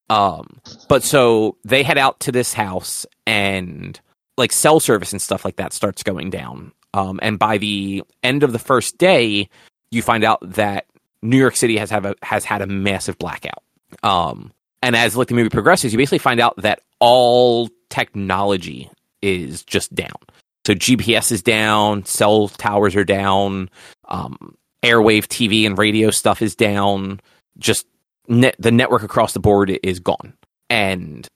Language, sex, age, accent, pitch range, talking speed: English, male, 30-49, American, 100-120 Hz, 165 wpm